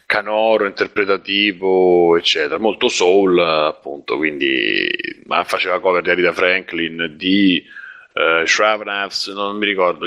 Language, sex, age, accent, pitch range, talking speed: Italian, male, 30-49, native, 95-130 Hz, 115 wpm